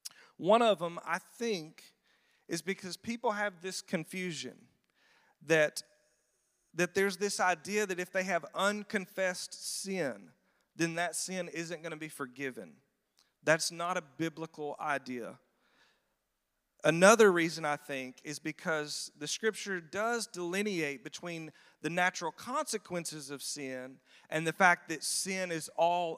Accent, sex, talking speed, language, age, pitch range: American, male, 135 wpm, English, 40-59, 150-185 Hz